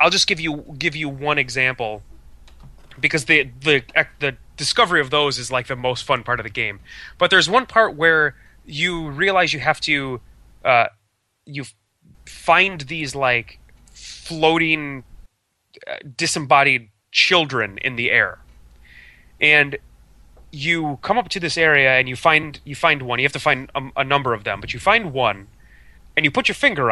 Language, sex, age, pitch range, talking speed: English, male, 30-49, 115-160 Hz, 170 wpm